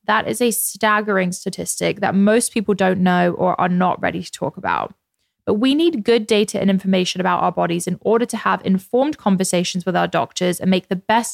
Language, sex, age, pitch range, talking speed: English, female, 20-39, 185-220 Hz, 210 wpm